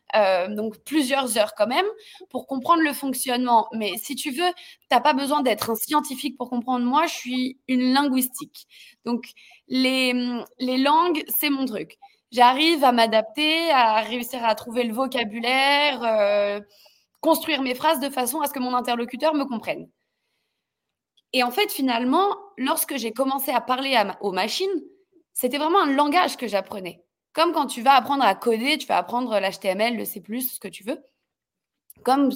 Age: 20-39